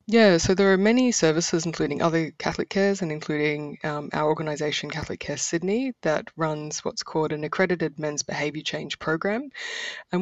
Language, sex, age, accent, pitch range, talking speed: English, female, 20-39, Australian, 145-175 Hz, 170 wpm